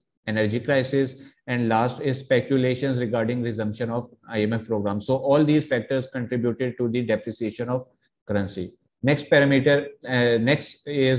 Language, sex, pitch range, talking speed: Urdu, male, 120-135 Hz, 140 wpm